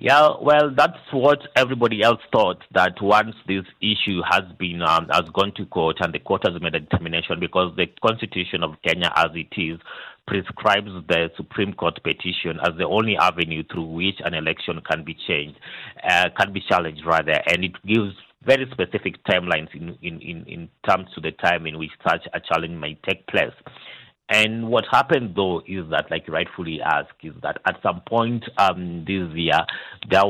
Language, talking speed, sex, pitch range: English, 185 wpm, male, 80-105 Hz